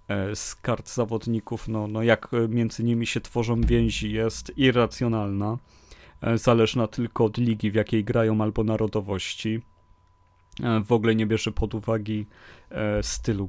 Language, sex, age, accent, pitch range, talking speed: Polish, male, 30-49, native, 105-115 Hz, 130 wpm